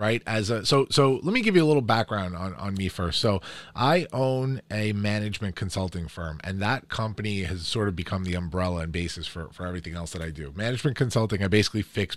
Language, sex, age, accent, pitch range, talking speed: English, male, 30-49, American, 90-110 Hz, 225 wpm